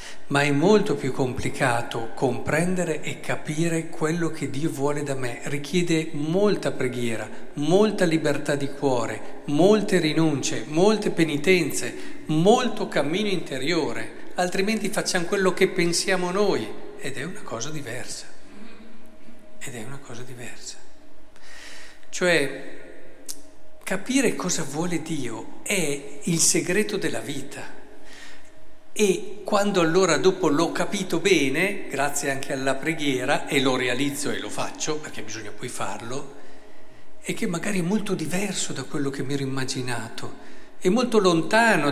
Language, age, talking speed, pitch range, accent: Italian, 50-69, 130 wpm, 145-200 Hz, native